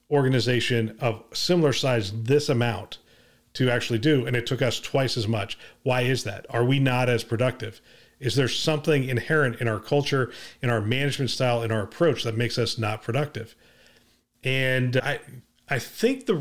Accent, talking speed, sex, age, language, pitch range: American, 175 wpm, male, 40-59, English, 115-145 Hz